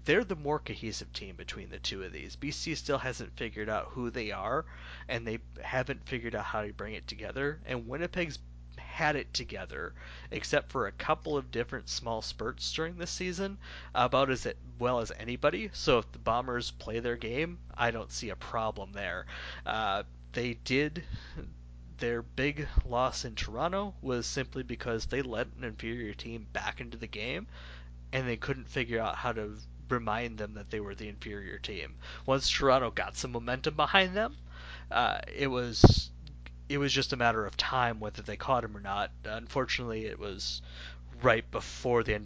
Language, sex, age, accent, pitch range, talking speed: English, male, 30-49, American, 100-135 Hz, 180 wpm